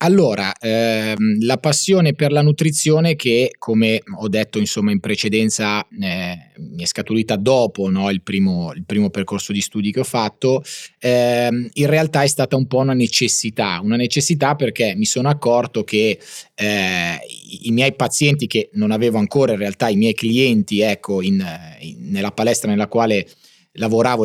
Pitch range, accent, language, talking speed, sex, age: 105-135 Hz, native, Italian, 170 wpm, male, 30-49